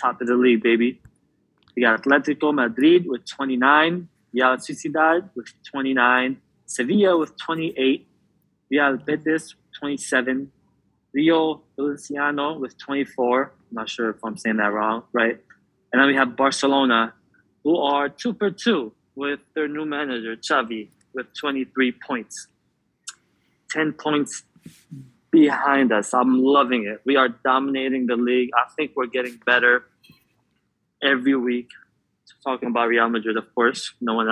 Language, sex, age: English, male, 20-39